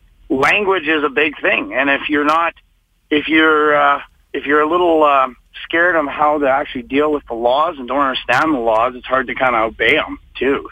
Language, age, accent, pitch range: English, 40-59, American, 120-150 Hz